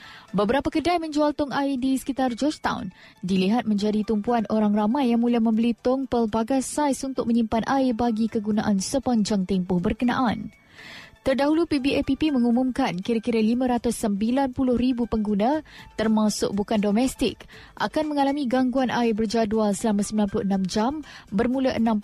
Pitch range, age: 215-260 Hz, 20-39